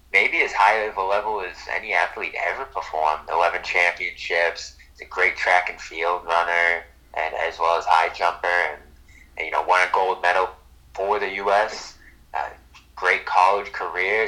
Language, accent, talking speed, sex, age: English, American, 170 wpm, male, 30-49